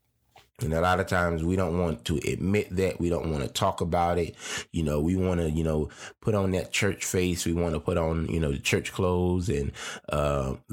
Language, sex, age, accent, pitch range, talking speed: English, male, 20-39, American, 90-125 Hz, 235 wpm